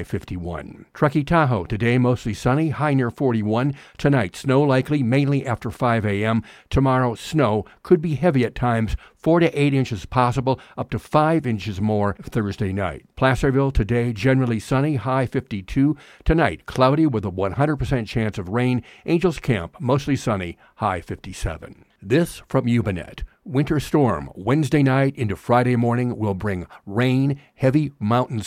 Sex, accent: male, American